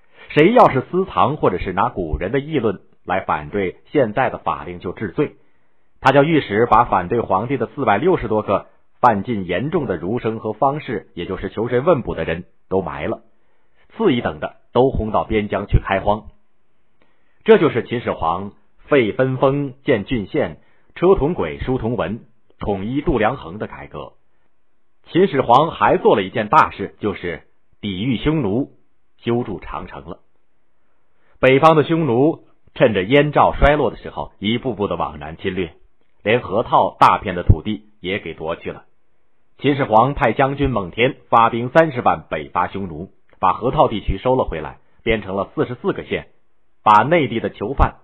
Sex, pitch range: male, 95-130 Hz